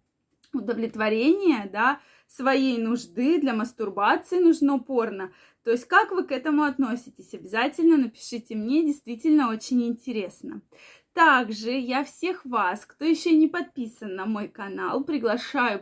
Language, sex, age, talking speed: Russian, female, 20-39, 125 wpm